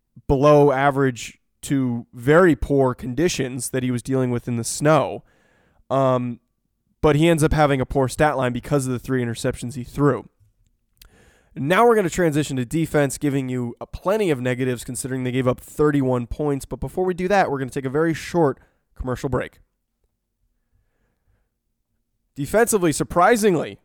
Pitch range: 130-160 Hz